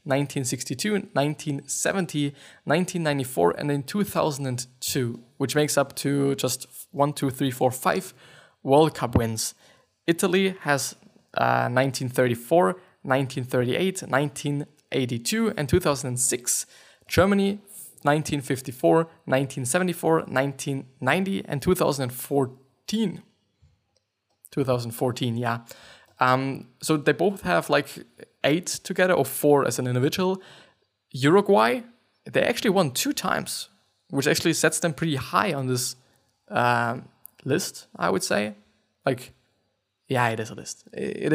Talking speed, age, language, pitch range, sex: 105 wpm, 20-39, English, 130-175 Hz, male